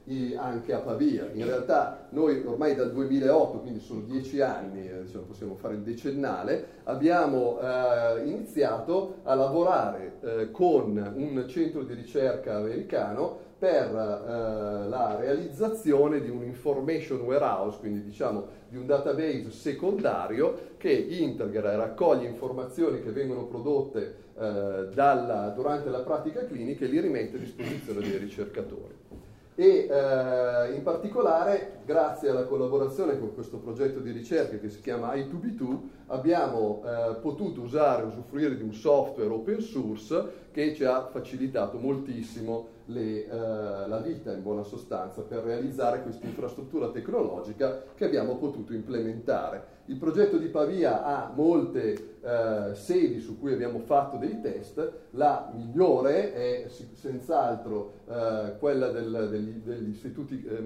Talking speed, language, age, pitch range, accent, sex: 130 wpm, Italian, 30-49, 115-165 Hz, native, male